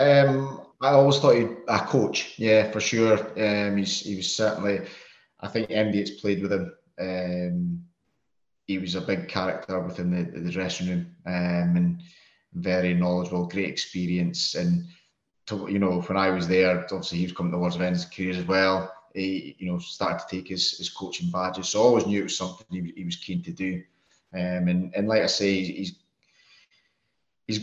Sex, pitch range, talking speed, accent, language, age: male, 95-110 Hz, 200 wpm, British, English, 20-39